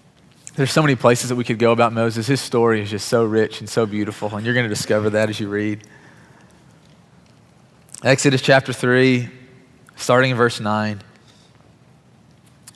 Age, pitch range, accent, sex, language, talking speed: 30-49, 110-130 Hz, American, male, English, 160 wpm